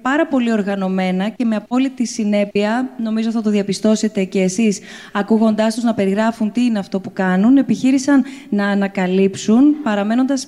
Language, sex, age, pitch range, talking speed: English, female, 20-39, 195-250 Hz, 150 wpm